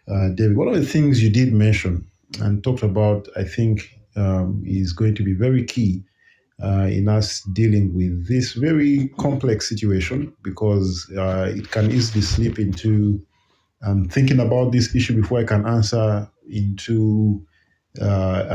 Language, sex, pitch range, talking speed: English, male, 100-115 Hz, 150 wpm